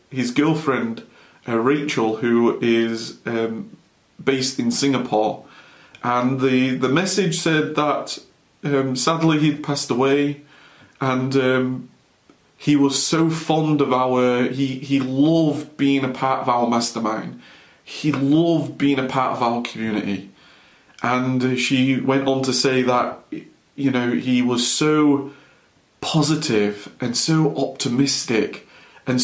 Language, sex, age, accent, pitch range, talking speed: English, male, 30-49, British, 125-150 Hz, 130 wpm